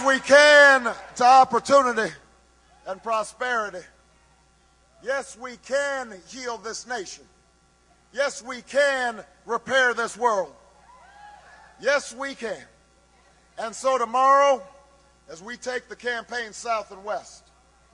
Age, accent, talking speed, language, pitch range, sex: 30-49, American, 105 wpm, English, 195-255 Hz, male